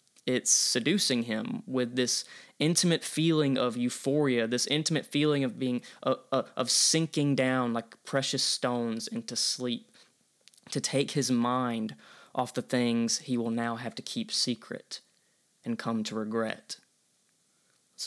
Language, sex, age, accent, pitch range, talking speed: English, male, 20-39, American, 120-150 Hz, 145 wpm